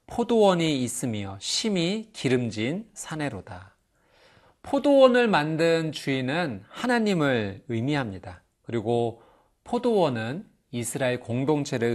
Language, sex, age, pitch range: Korean, male, 40-59, 115-195 Hz